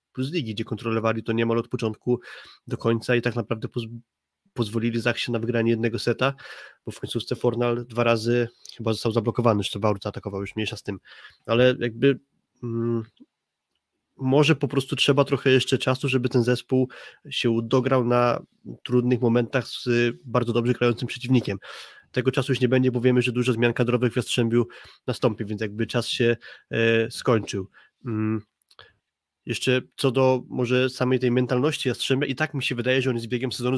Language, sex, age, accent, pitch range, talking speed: Polish, male, 20-39, native, 115-130 Hz, 175 wpm